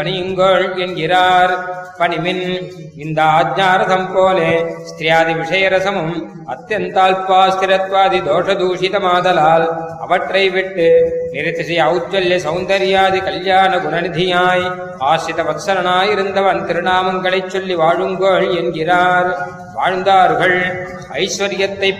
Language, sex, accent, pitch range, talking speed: Tamil, male, native, 170-190 Hz, 55 wpm